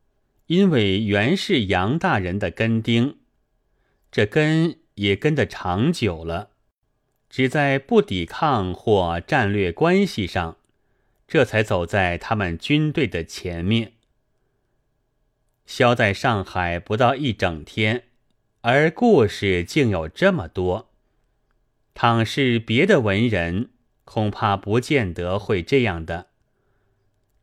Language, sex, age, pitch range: Chinese, male, 30-49, 95-135 Hz